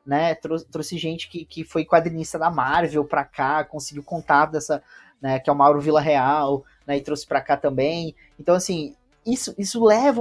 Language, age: Portuguese, 20-39